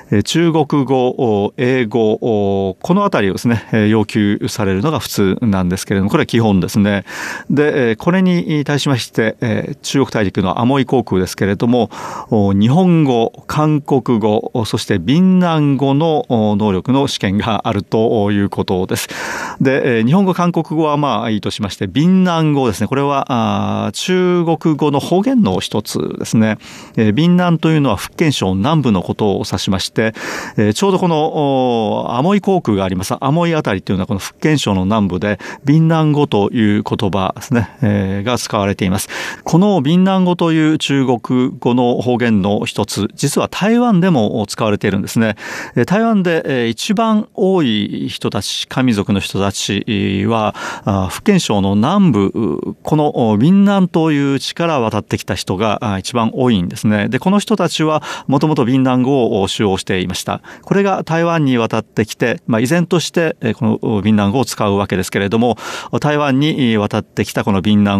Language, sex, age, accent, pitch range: Japanese, male, 40-59, native, 105-155 Hz